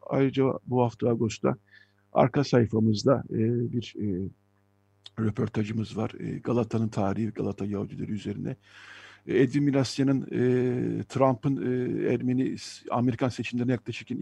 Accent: native